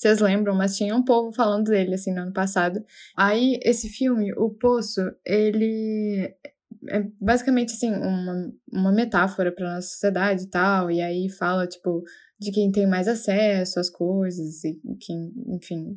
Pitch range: 180-215 Hz